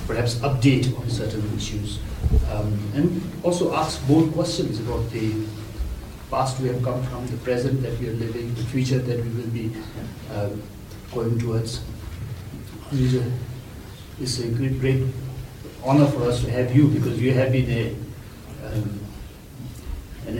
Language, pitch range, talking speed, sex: English, 115-135 Hz, 145 wpm, male